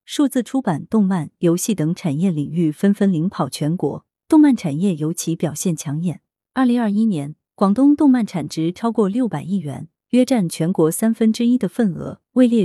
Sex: female